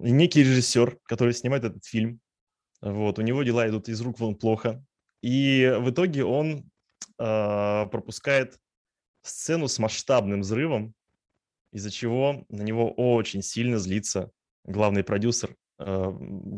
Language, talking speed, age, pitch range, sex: Russian, 125 wpm, 20-39, 105-130 Hz, male